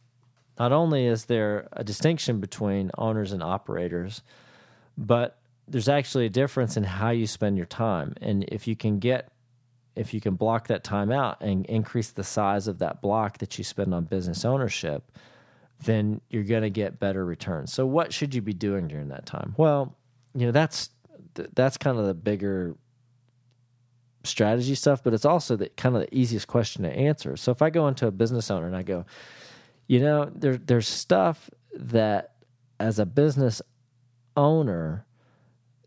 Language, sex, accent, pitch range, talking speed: English, male, American, 105-135 Hz, 175 wpm